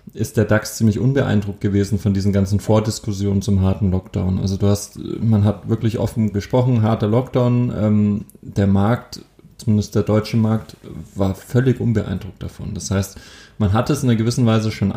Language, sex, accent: German, male, German